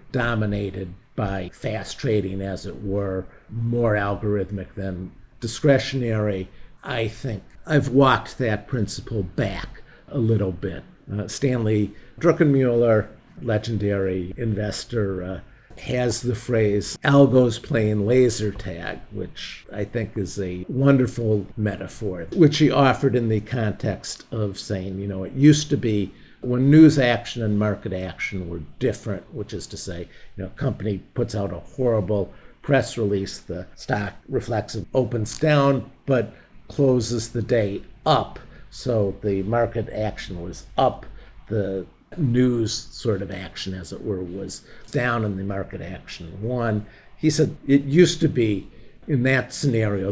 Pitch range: 100-125 Hz